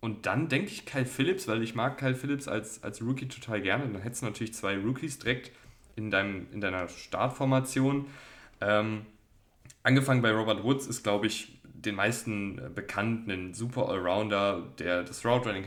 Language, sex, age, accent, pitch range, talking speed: German, male, 10-29, German, 100-125 Hz, 170 wpm